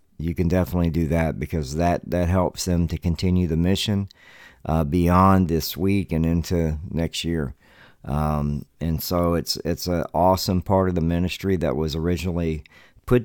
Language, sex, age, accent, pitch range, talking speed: English, male, 50-69, American, 80-95 Hz, 170 wpm